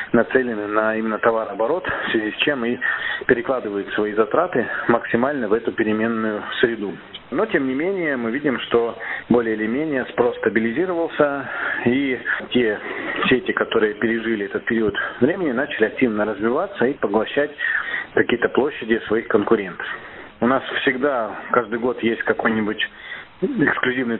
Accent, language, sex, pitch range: native, Russian, male, 110-125 Hz